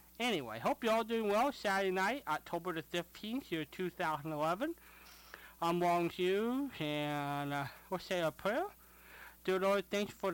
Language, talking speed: English, 155 wpm